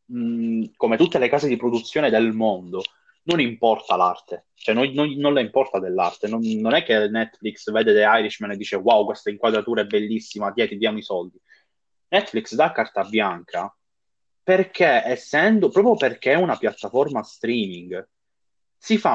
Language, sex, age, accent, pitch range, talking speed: Italian, male, 20-39, native, 105-135 Hz, 165 wpm